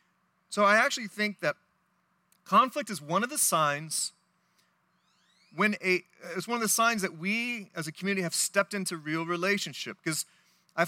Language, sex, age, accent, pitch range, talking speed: English, male, 30-49, American, 150-195 Hz, 165 wpm